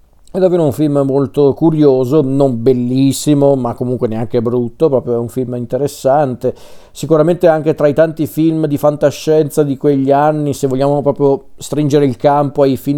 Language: Italian